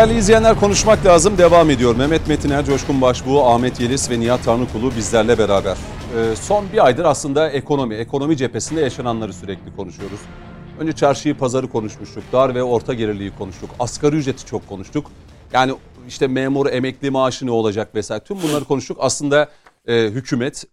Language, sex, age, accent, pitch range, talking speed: Turkish, male, 40-59, native, 110-140 Hz, 155 wpm